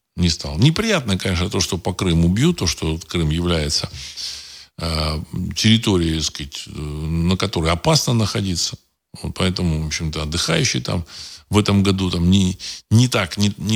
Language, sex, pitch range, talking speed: Russian, male, 80-115 Hz, 150 wpm